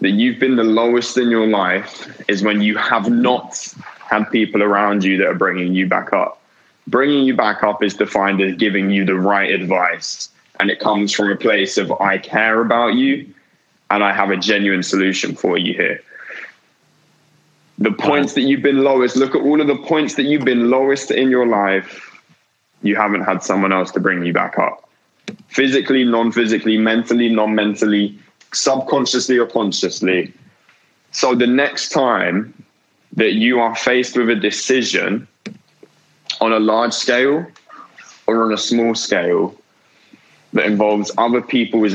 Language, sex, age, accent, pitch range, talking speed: English, male, 20-39, British, 105-130 Hz, 170 wpm